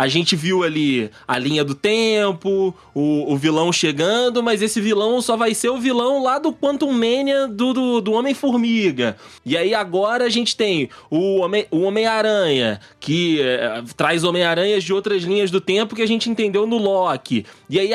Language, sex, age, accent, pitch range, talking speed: Portuguese, male, 20-39, Brazilian, 140-215 Hz, 185 wpm